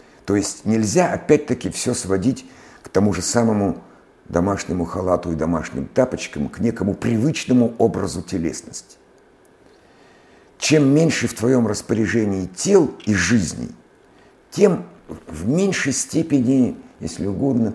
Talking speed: 115 wpm